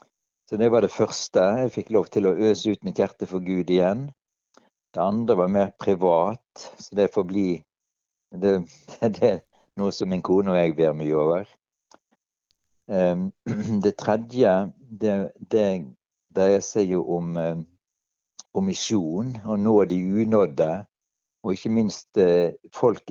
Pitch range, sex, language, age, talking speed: 85-105 Hz, male, English, 60-79, 140 wpm